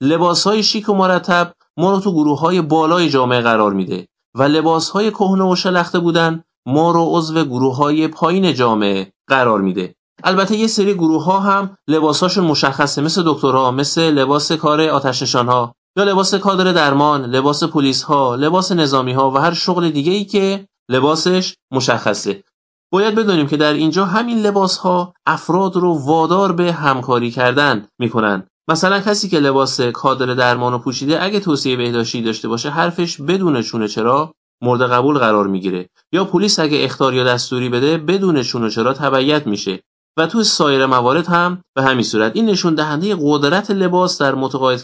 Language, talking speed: Persian, 165 wpm